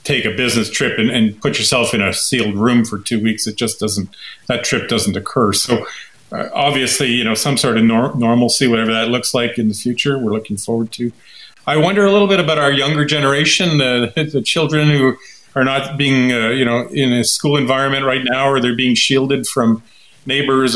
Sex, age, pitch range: male, 40-59, 115-135 Hz